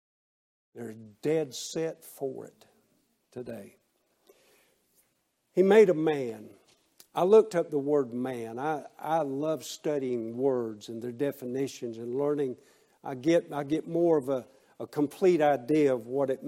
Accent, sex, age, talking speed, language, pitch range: American, male, 60-79, 140 wpm, English, 130-180 Hz